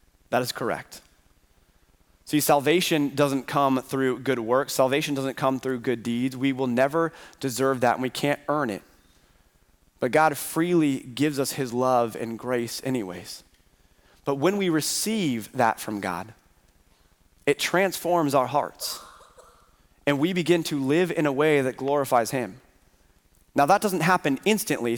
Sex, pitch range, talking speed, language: male, 125-160 Hz, 150 wpm, English